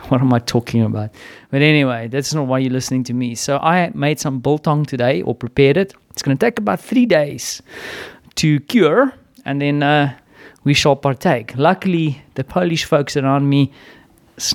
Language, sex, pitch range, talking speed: English, male, 125-155 Hz, 185 wpm